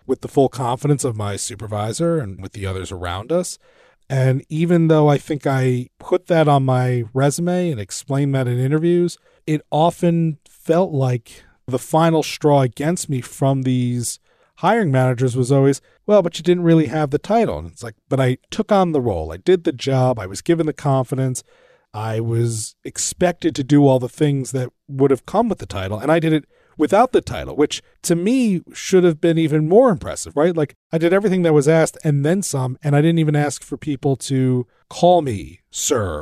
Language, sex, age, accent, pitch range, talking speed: English, male, 40-59, American, 130-160 Hz, 205 wpm